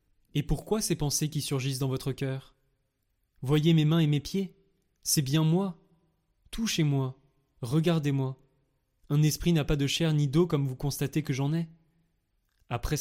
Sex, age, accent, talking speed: male, 20-39, French, 170 wpm